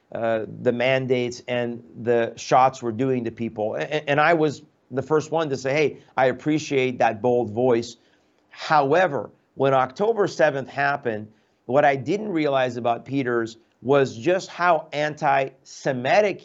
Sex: male